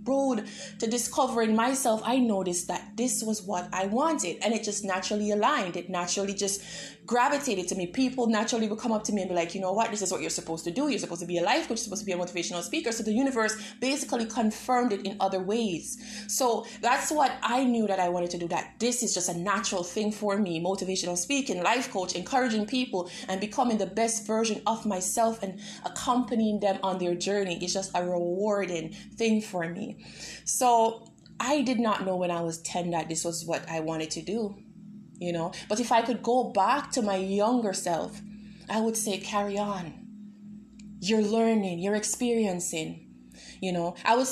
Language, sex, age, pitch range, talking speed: English, female, 20-39, 185-230 Hz, 205 wpm